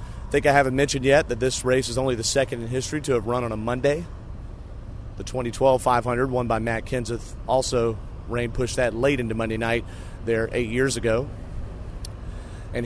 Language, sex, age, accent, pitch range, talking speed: English, male, 30-49, American, 105-140 Hz, 185 wpm